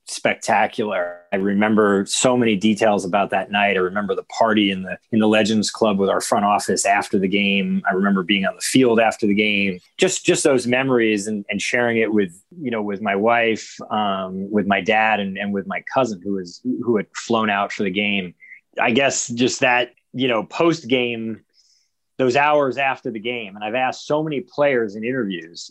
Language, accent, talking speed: English, American, 205 wpm